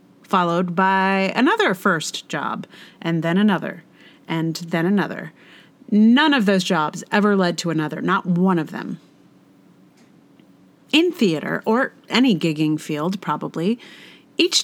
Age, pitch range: 40-59, 175-225 Hz